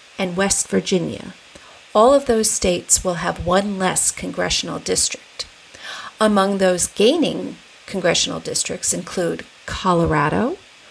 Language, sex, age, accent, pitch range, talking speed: English, female, 40-59, American, 175-220 Hz, 110 wpm